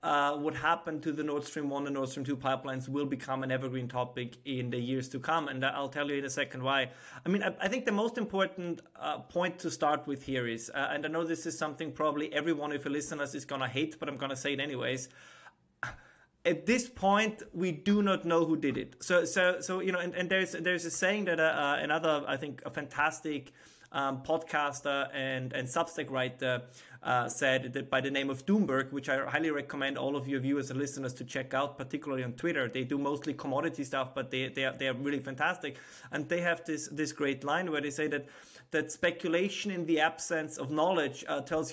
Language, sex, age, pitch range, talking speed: Italian, male, 30-49, 135-165 Hz, 230 wpm